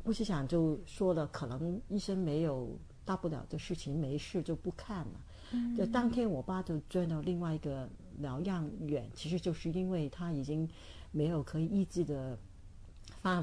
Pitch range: 145-180 Hz